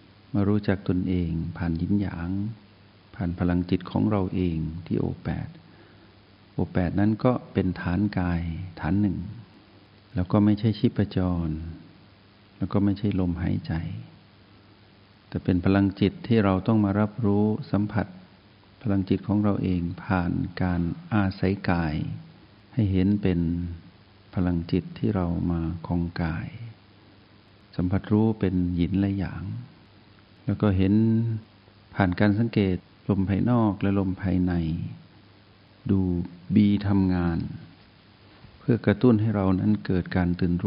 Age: 60-79